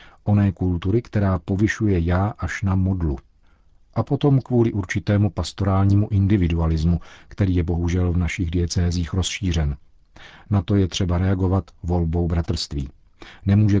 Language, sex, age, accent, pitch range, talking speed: Czech, male, 50-69, native, 85-100 Hz, 125 wpm